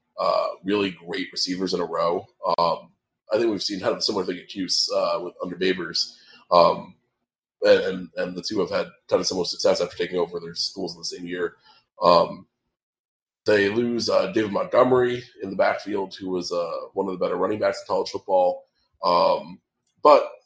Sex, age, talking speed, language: male, 20-39, 195 wpm, English